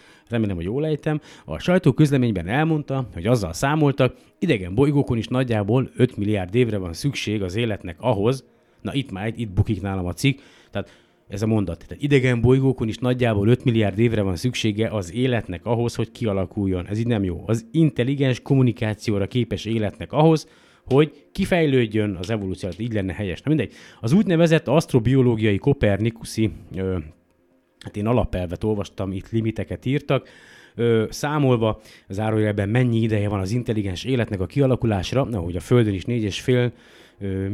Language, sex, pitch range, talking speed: Hungarian, male, 100-130 Hz, 155 wpm